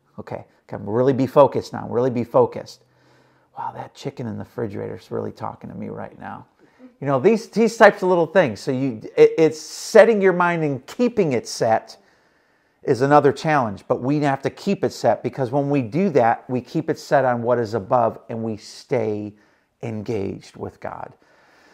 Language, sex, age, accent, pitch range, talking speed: English, male, 40-59, American, 115-155 Hz, 195 wpm